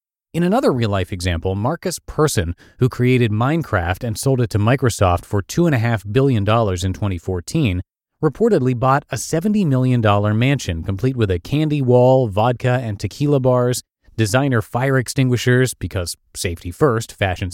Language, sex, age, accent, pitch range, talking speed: English, male, 30-49, American, 100-140 Hz, 140 wpm